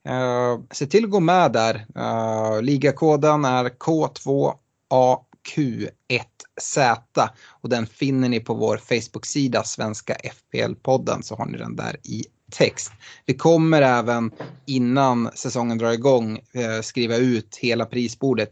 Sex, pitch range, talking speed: male, 110-135 Hz, 125 wpm